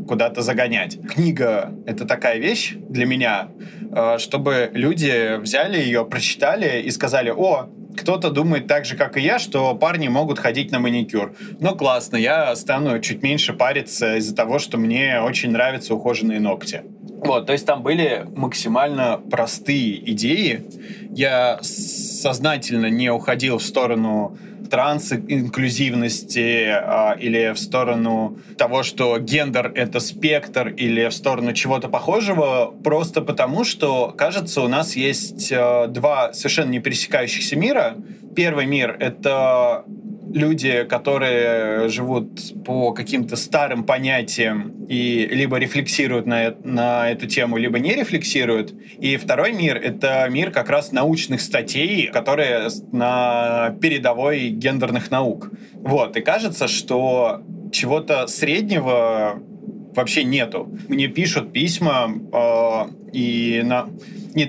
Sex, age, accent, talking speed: male, 20-39, native, 125 wpm